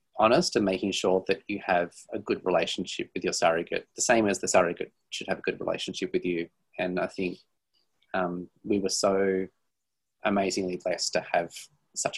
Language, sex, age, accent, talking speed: English, male, 30-49, Australian, 180 wpm